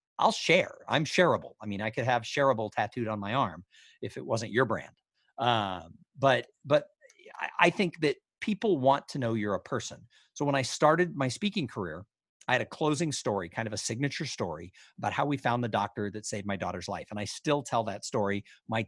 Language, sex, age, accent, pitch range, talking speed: English, male, 50-69, American, 110-160 Hz, 215 wpm